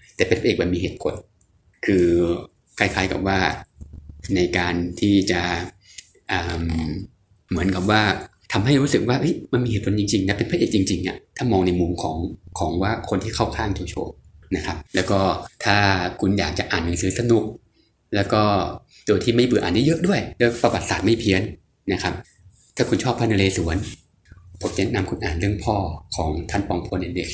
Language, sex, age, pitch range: Thai, male, 20-39, 90-105 Hz